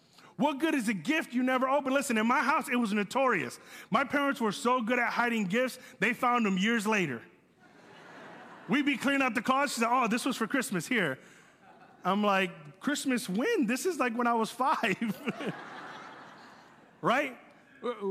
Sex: male